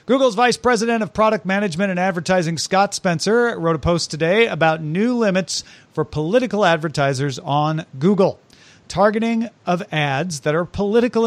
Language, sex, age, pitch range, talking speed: English, male, 40-59, 130-175 Hz, 150 wpm